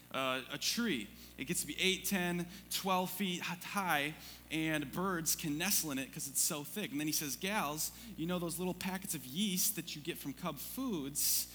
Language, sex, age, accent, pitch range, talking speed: English, male, 20-39, American, 135-180 Hz, 210 wpm